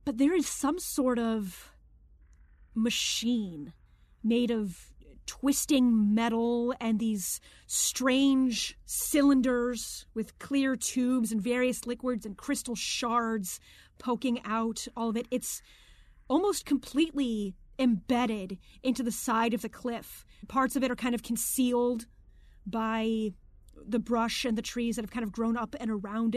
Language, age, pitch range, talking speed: English, 30-49, 210-255 Hz, 135 wpm